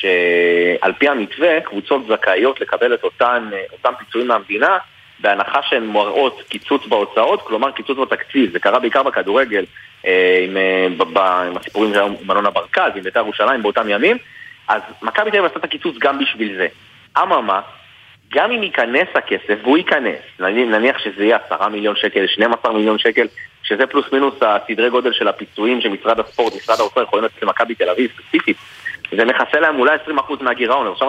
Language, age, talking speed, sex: Hebrew, 30-49, 150 wpm, male